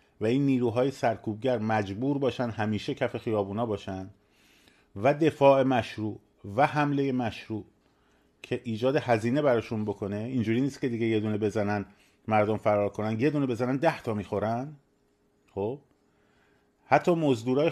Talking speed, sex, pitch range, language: 135 wpm, male, 110-140 Hz, Persian